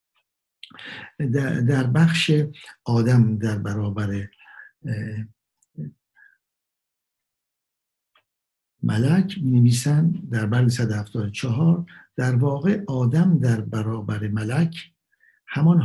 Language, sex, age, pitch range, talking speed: Persian, male, 60-79, 110-150 Hz, 70 wpm